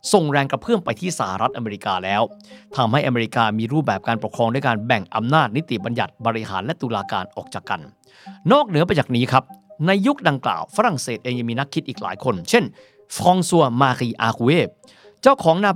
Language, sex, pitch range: Thai, male, 125-205 Hz